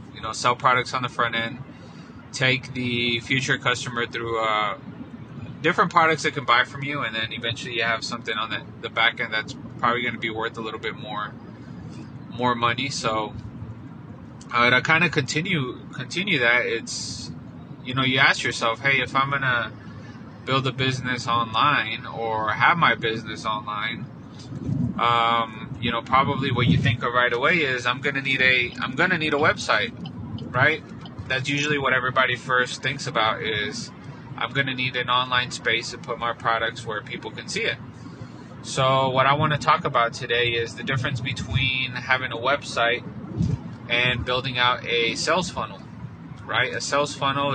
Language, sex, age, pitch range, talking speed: English, male, 20-39, 120-135 Hz, 180 wpm